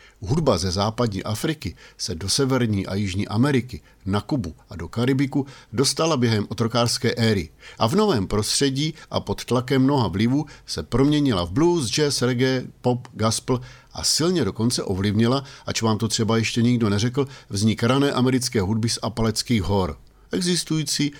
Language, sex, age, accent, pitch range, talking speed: Czech, male, 50-69, native, 105-130 Hz, 155 wpm